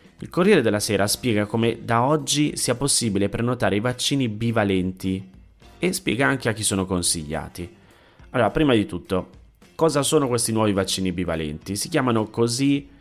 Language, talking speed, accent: Italian, 155 wpm, native